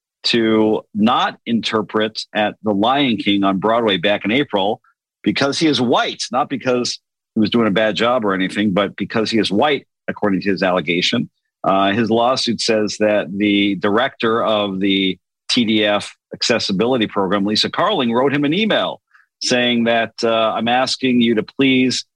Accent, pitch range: American, 105-125 Hz